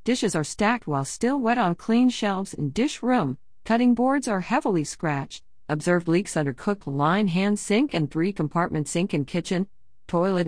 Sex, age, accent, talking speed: female, 40-59, American, 180 wpm